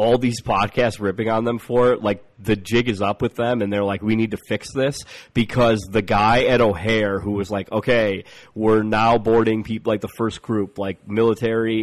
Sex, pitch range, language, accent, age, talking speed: male, 100-115 Hz, English, American, 30-49, 215 wpm